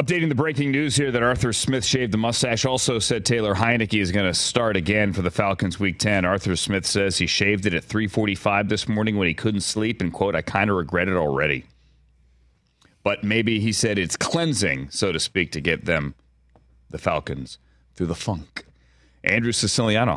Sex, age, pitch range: male, 30-49, 95-135 Hz